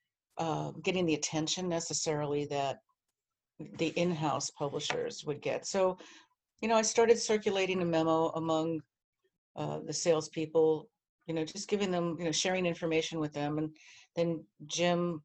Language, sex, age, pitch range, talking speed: English, female, 50-69, 155-205 Hz, 145 wpm